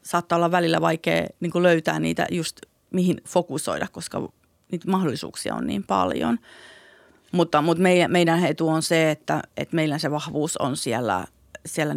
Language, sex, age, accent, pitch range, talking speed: Finnish, female, 40-59, native, 145-170 Hz, 150 wpm